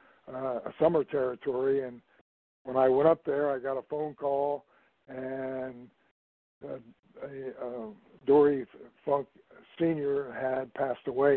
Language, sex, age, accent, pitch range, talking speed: English, male, 60-79, American, 130-145 Hz, 115 wpm